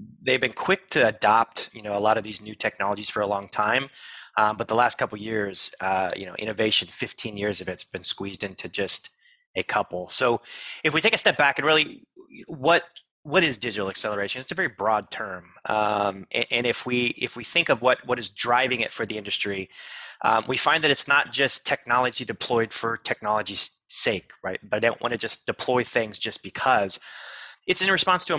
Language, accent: English, American